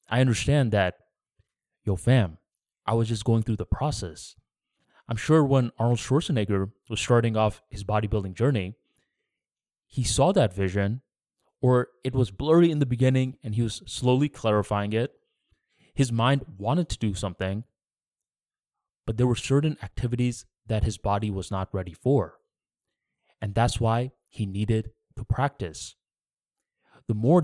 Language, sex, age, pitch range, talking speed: English, male, 20-39, 105-125 Hz, 145 wpm